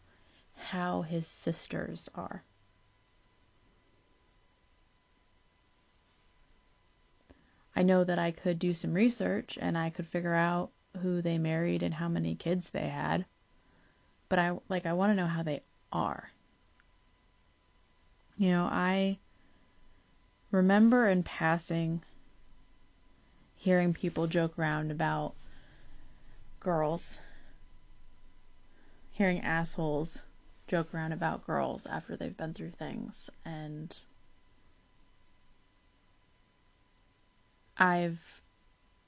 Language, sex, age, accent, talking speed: English, female, 30-49, American, 95 wpm